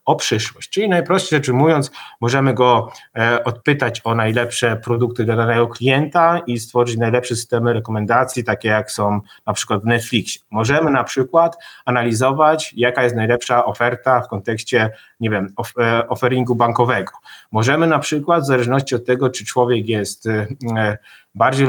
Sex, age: male, 30-49